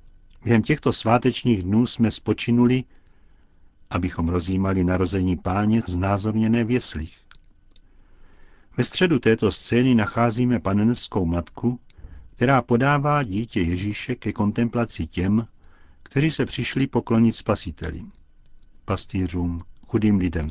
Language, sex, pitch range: Czech, male, 90-120 Hz